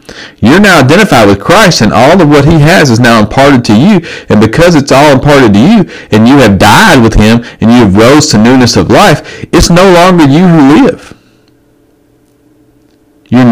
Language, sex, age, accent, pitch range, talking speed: English, male, 40-59, American, 95-135 Hz, 195 wpm